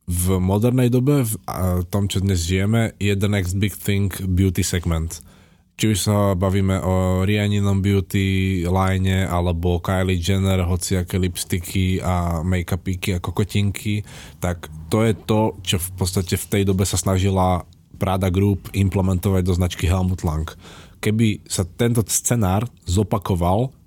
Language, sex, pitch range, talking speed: Slovak, male, 90-105 Hz, 145 wpm